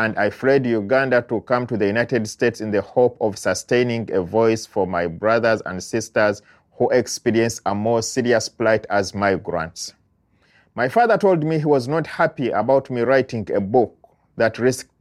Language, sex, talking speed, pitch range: English, male, 180 wpm, 95-125 Hz